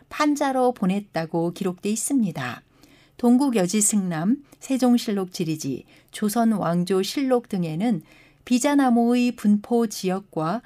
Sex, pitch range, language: female, 175-235 Hz, Korean